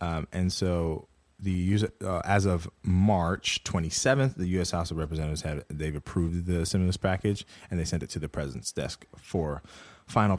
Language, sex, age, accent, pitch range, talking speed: English, male, 20-39, American, 80-100 Hz, 180 wpm